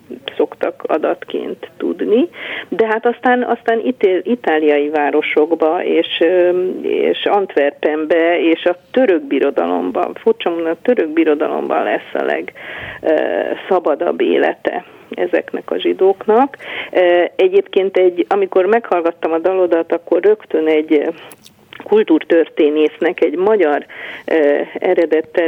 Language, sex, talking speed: Hungarian, female, 100 wpm